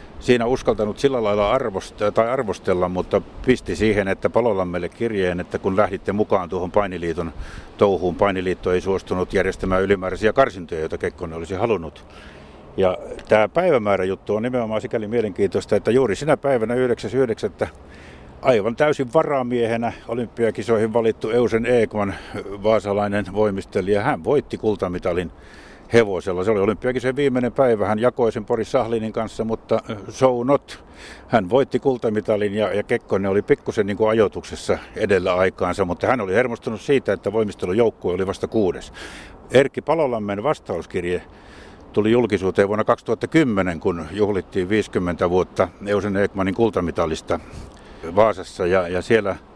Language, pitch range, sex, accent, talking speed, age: Finnish, 95-115 Hz, male, native, 130 wpm, 60-79